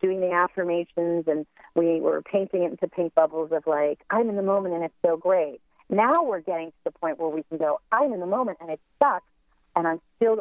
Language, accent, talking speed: English, American, 235 wpm